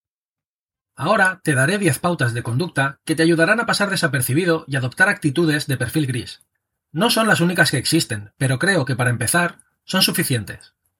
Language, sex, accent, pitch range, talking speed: Spanish, male, Spanish, 130-175 Hz, 175 wpm